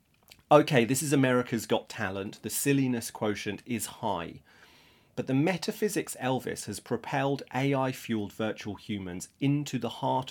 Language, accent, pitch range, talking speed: English, British, 100-135 Hz, 140 wpm